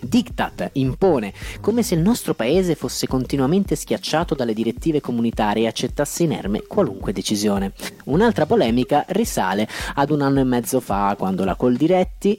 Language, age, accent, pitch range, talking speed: Italian, 30-49, native, 105-145 Hz, 145 wpm